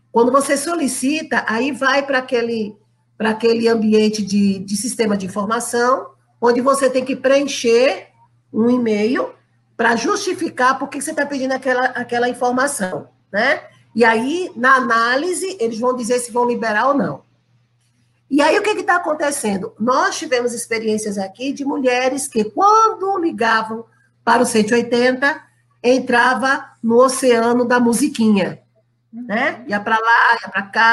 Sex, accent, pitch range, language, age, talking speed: female, Brazilian, 200-255 Hz, Portuguese, 50-69, 145 wpm